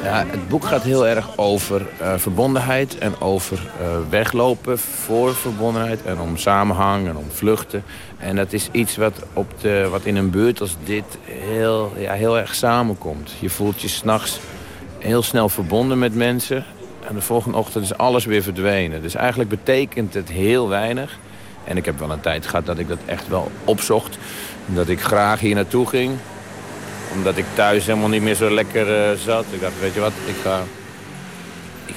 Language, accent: Dutch, Dutch